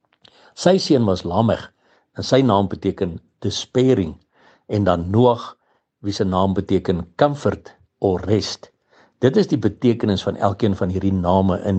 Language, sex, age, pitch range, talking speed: English, male, 60-79, 95-130 Hz, 145 wpm